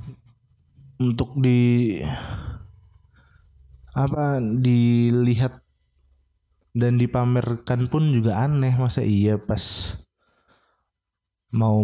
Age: 20-39